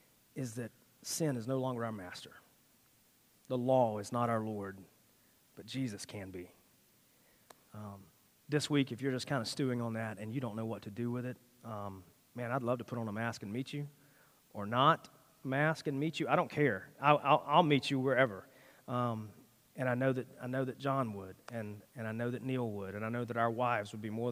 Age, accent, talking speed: 30-49, American, 225 wpm